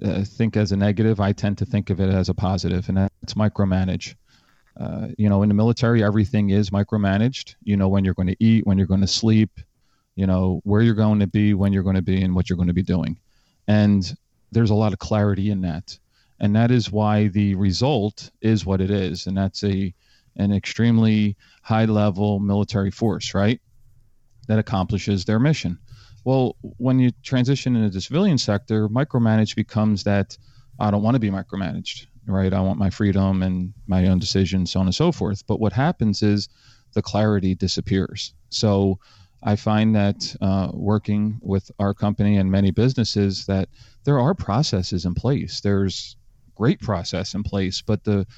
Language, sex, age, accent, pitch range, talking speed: English, male, 40-59, American, 95-110 Hz, 190 wpm